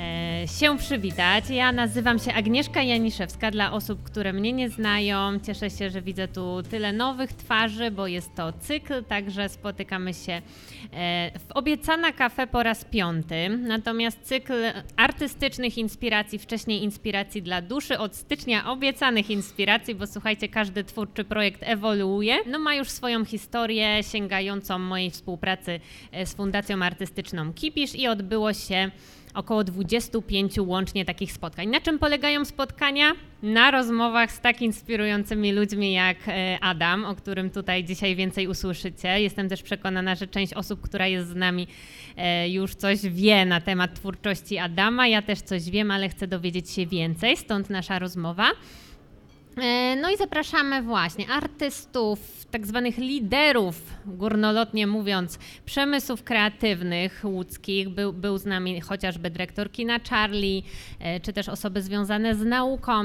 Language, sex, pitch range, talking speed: Polish, female, 190-235 Hz, 140 wpm